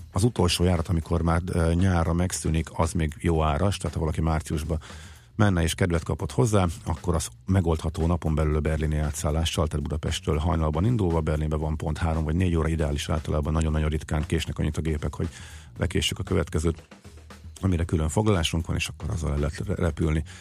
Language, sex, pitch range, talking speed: Hungarian, male, 80-95 Hz, 175 wpm